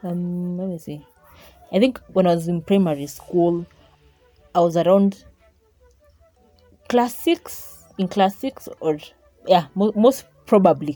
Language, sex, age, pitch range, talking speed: English, female, 20-39, 150-190 Hz, 125 wpm